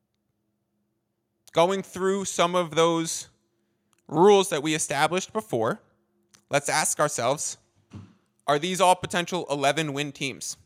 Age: 20-39